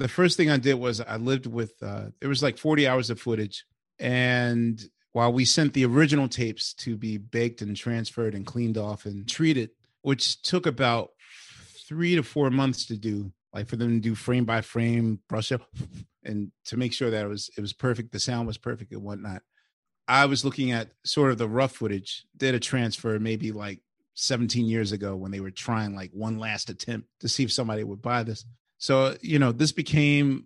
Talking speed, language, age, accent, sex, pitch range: 205 wpm, English, 30-49, American, male, 110-130 Hz